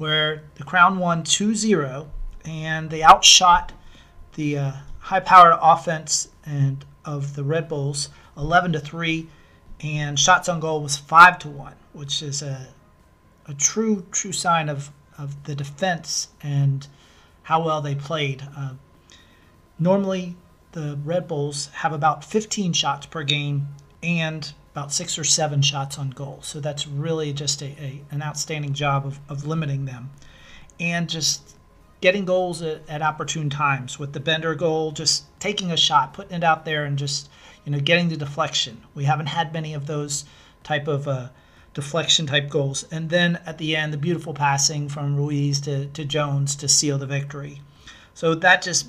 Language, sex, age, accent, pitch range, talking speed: English, male, 40-59, American, 140-160 Hz, 160 wpm